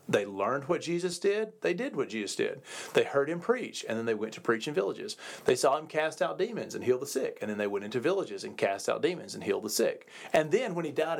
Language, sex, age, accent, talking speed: English, male, 40-59, American, 275 wpm